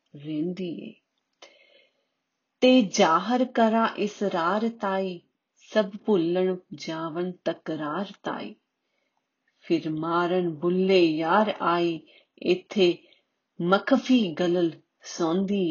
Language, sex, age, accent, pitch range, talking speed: Hindi, female, 30-49, native, 165-200 Hz, 60 wpm